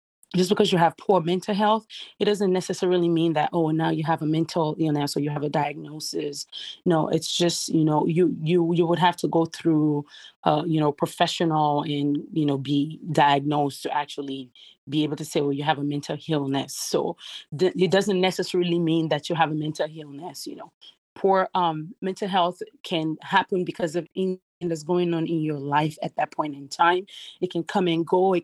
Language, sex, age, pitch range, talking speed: English, female, 30-49, 155-180 Hz, 205 wpm